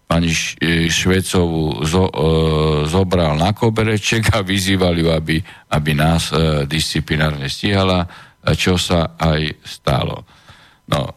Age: 50-69